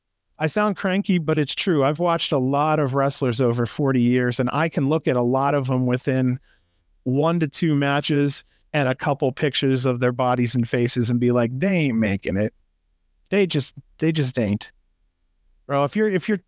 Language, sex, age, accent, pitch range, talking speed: English, male, 30-49, American, 120-160 Hz, 200 wpm